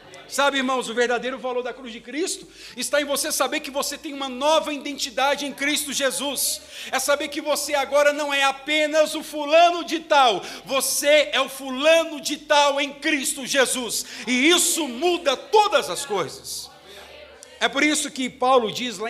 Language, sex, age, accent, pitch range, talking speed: Portuguese, male, 50-69, Brazilian, 205-300 Hz, 175 wpm